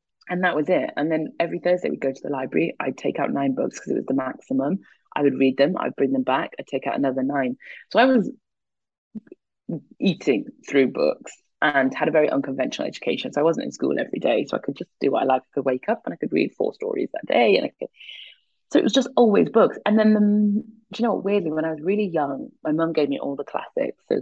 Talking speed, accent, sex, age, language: 260 wpm, British, female, 30-49, English